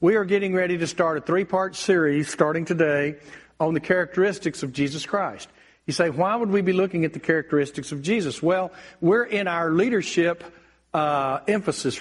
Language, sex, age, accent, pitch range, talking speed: English, male, 50-69, American, 165-220 Hz, 180 wpm